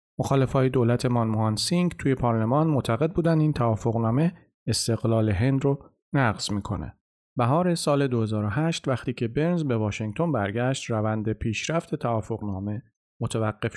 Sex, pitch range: male, 105-135 Hz